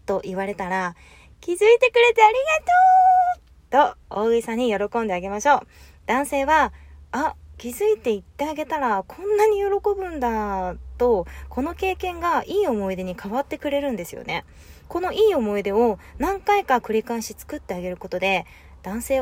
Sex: female